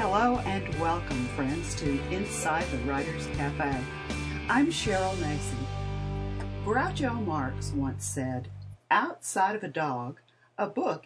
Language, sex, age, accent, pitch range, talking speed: English, female, 50-69, American, 130-175 Hz, 120 wpm